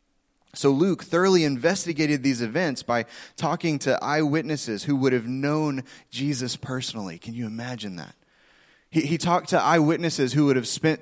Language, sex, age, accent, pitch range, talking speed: English, male, 20-39, American, 110-150 Hz, 160 wpm